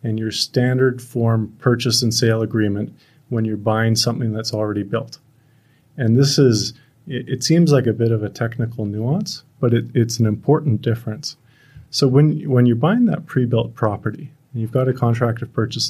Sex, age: male, 30-49